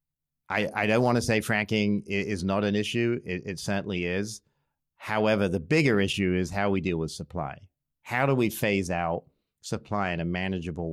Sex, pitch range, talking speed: male, 90-105 Hz, 185 wpm